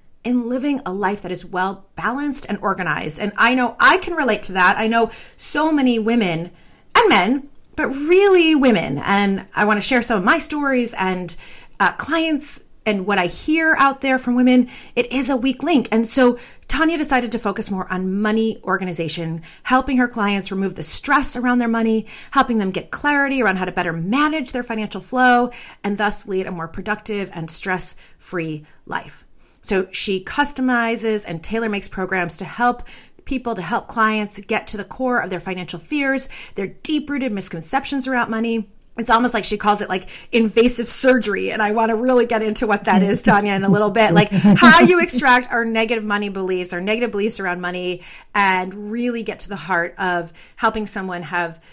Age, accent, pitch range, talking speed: 30-49, American, 190-250 Hz, 195 wpm